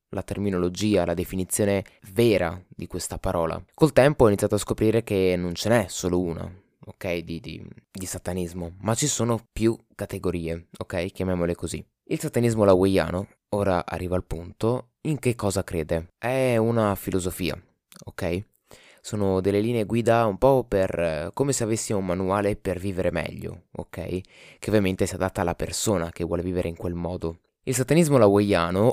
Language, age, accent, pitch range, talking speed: Italian, 20-39, native, 90-110 Hz, 165 wpm